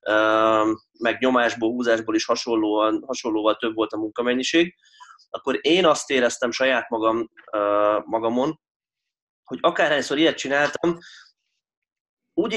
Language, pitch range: Hungarian, 115-145 Hz